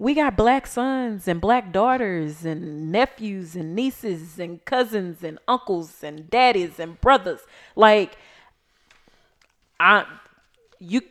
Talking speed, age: 120 wpm, 20-39